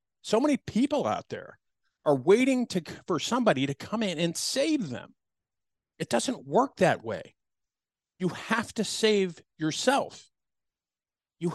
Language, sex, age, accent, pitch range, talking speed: English, male, 50-69, American, 135-205 Hz, 140 wpm